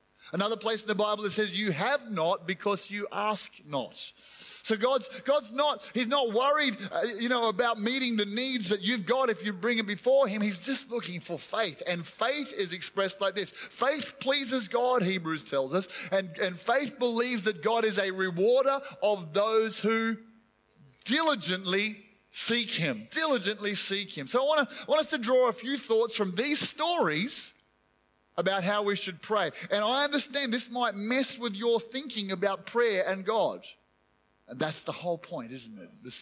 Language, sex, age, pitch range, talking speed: English, male, 30-49, 190-245 Hz, 180 wpm